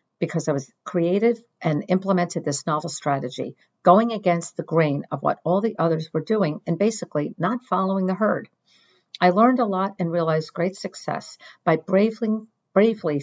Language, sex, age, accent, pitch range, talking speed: English, female, 50-69, American, 155-200 Hz, 170 wpm